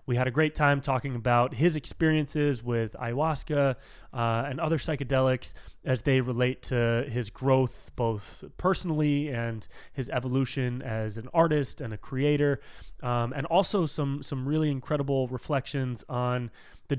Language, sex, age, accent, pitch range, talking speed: English, male, 20-39, American, 125-155 Hz, 150 wpm